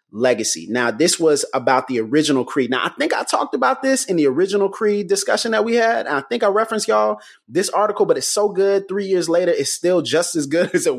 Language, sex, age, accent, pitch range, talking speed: English, male, 30-49, American, 125-175 Hz, 245 wpm